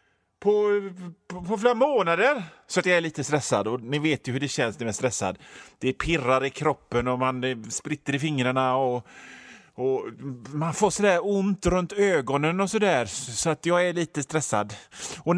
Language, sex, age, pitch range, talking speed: Swedish, male, 30-49, 125-185 Hz, 185 wpm